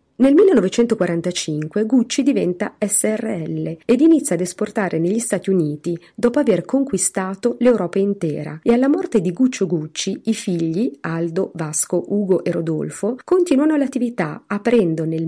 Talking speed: 135 wpm